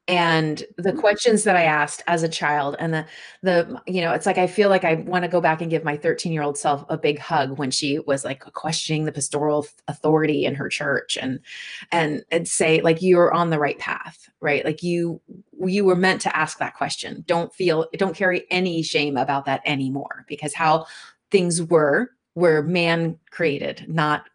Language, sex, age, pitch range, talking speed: English, female, 30-49, 155-195 Hz, 200 wpm